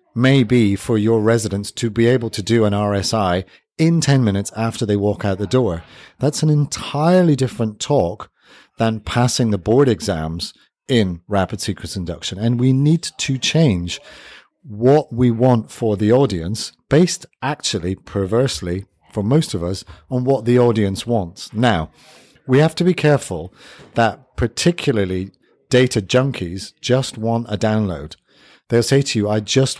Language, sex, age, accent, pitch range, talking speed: English, male, 40-59, British, 100-130 Hz, 155 wpm